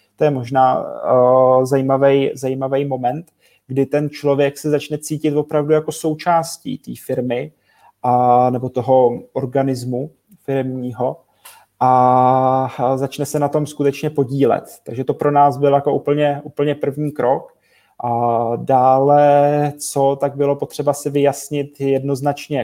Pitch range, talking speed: 130-145 Hz, 135 wpm